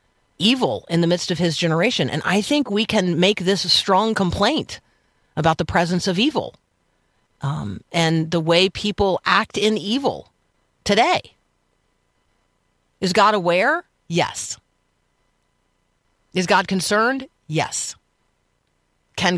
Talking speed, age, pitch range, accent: 125 wpm, 50-69, 150-195 Hz, American